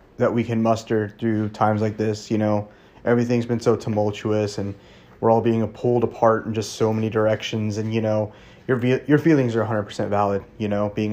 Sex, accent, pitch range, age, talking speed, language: male, American, 105-120 Hz, 30-49, 200 wpm, English